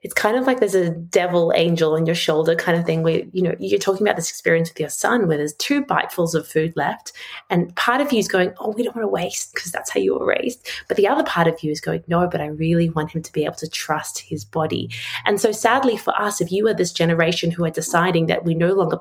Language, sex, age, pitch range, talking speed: English, female, 30-49, 160-200 Hz, 280 wpm